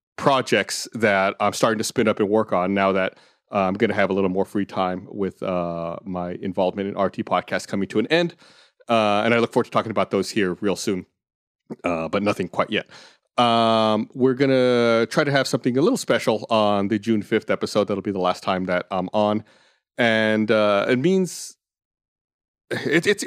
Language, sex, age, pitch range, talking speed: English, male, 40-59, 95-115 Hz, 200 wpm